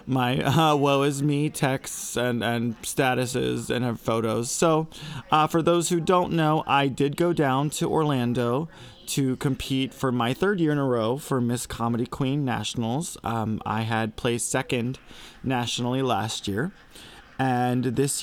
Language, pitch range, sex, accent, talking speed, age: English, 110-135 Hz, male, American, 160 wpm, 20-39